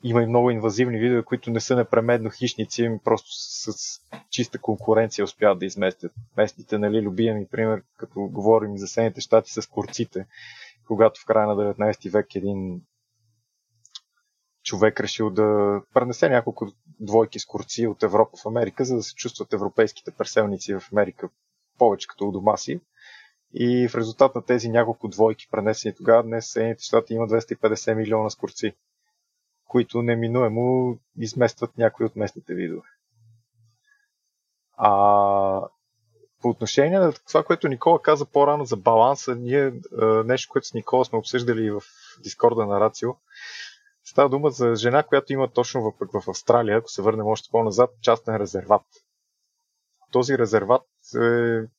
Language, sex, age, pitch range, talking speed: Bulgarian, male, 20-39, 110-130 Hz, 150 wpm